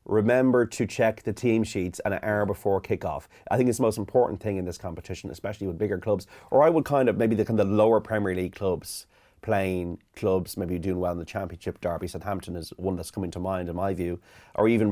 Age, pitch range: 30-49, 90-110 Hz